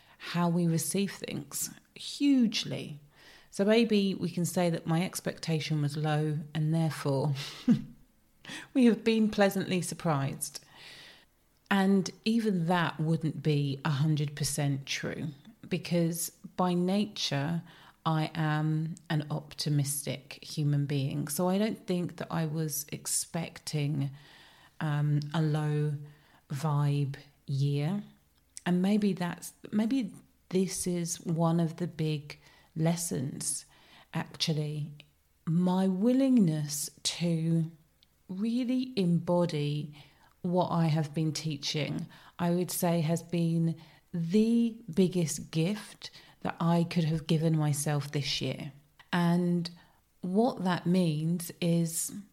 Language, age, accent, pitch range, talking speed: English, 40-59, British, 150-180 Hz, 110 wpm